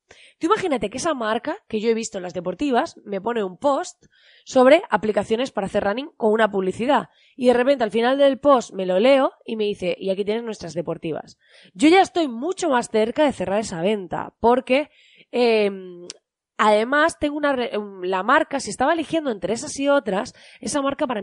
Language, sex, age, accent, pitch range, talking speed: Spanish, female, 20-39, Spanish, 195-270 Hz, 195 wpm